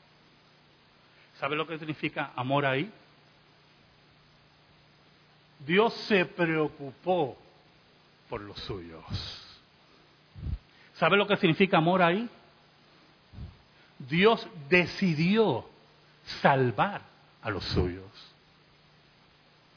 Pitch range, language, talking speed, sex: 150-225 Hz, Spanish, 75 wpm, male